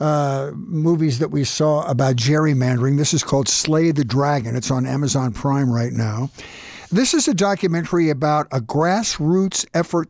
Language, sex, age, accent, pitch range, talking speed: English, male, 60-79, American, 135-180 Hz, 160 wpm